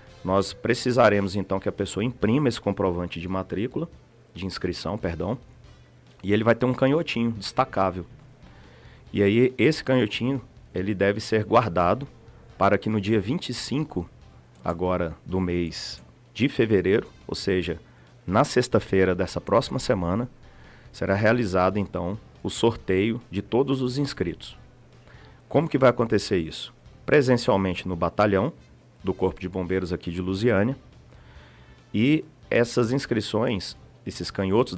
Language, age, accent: Portuguese, 40-59, Brazilian